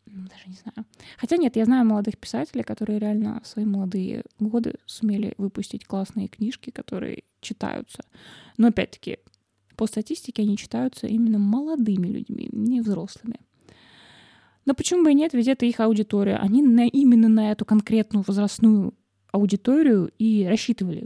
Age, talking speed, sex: 20-39, 140 wpm, female